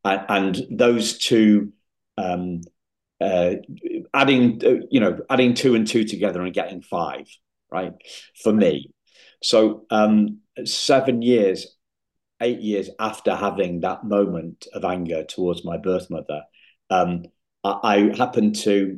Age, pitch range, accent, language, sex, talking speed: 50-69, 90-115 Hz, British, English, male, 125 wpm